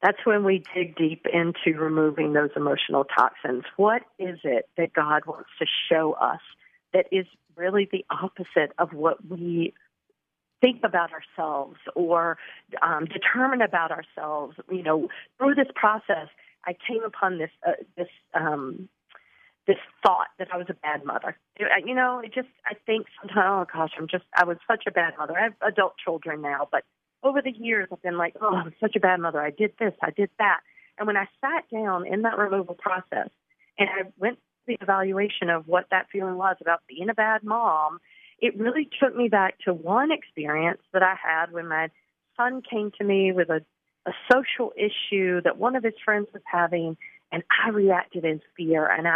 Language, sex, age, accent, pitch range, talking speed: English, female, 40-59, American, 170-225 Hz, 190 wpm